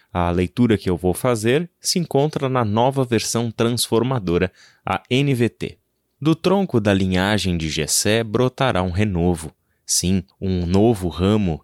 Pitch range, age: 90-115 Hz, 20-39